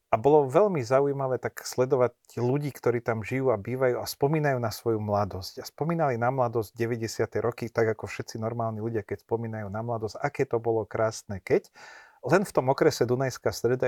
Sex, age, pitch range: male, 40-59, 110-125 Hz